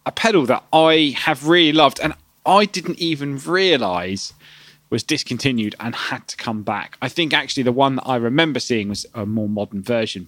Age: 30-49